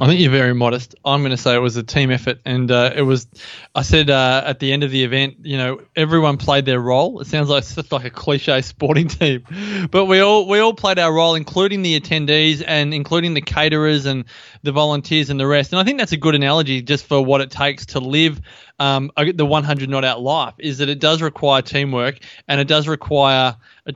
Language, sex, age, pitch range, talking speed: English, male, 20-39, 130-150 Hz, 235 wpm